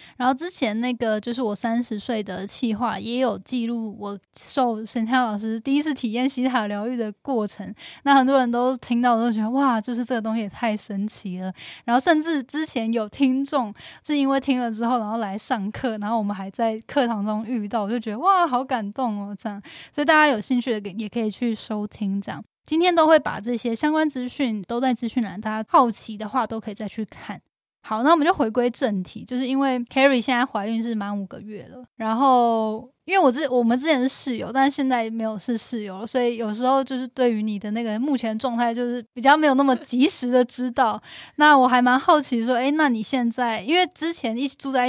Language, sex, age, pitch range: Chinese, female, 10-29, 220-260 Hz